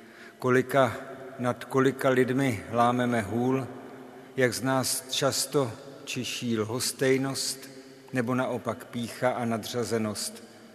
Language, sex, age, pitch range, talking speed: Czech, male, 50-69, 115-130 Hz, 95 wpm